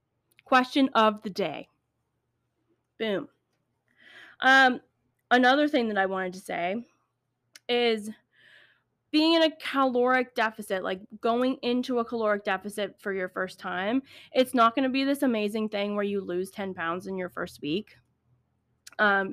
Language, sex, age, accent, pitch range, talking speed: English, female, 20-39, American, 210-255 Hz, 145 wpm